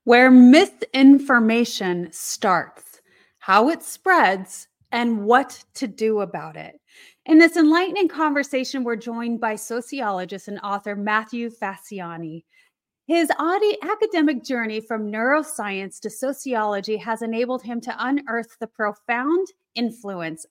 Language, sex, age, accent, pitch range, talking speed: English, female, 30-49, American, 215-300 Hz, 115 wpm